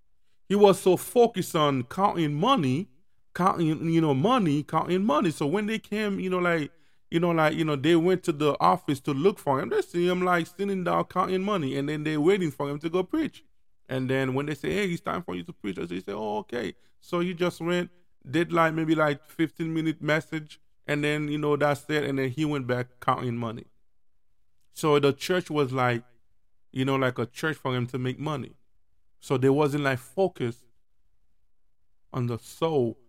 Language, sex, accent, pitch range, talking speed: English, male, American, 125-175 Hz, 205 wpm